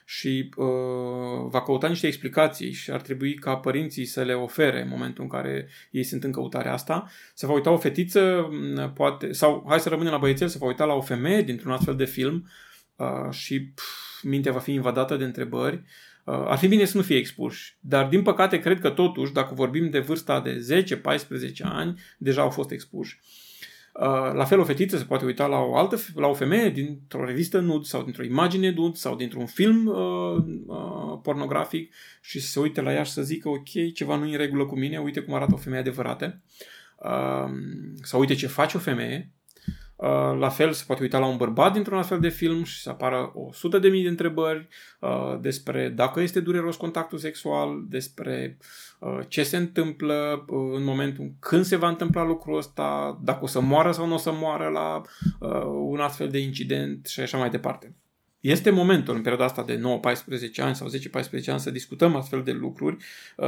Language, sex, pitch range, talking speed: Romanian, male, 125-165 Hz, 200 wpm